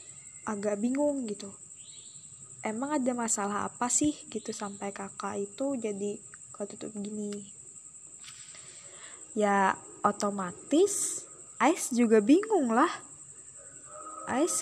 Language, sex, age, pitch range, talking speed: Indonesian, female, 10-29, 200-245 Hz, 85 wpm